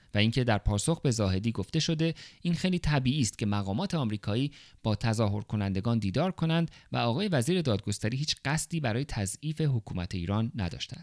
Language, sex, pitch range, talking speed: Persian, male, 105-140 Hz, 165 wpm